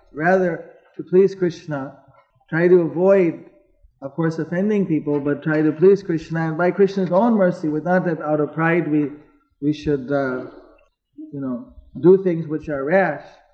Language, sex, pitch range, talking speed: English, male, 150-185 Hz, 165 wpm